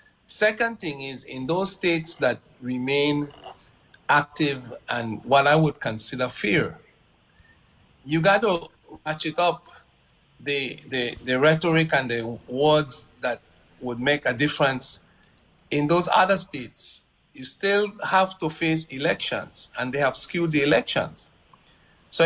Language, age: English, 50-69